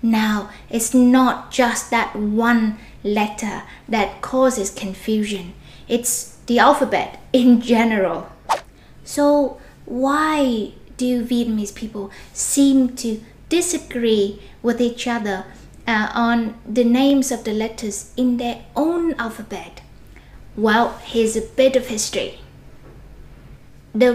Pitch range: 210-250 Hz